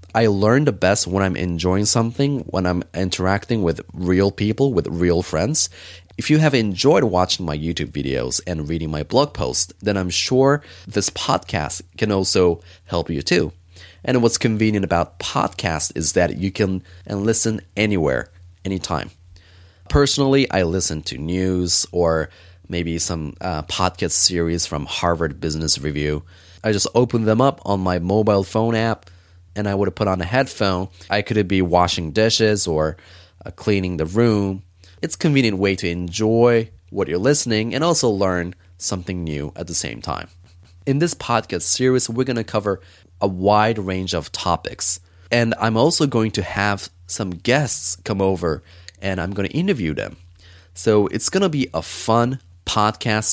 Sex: male